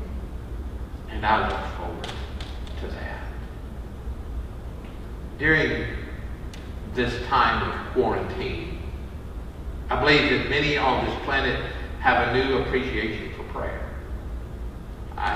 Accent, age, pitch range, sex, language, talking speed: American, 50-69, 70-105 Hz, male, English, 100 wpm